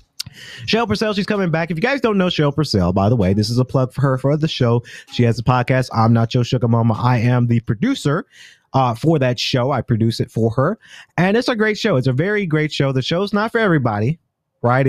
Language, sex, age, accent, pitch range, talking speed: English, male, 30-49, American, 115-160 Hz, 250 wpm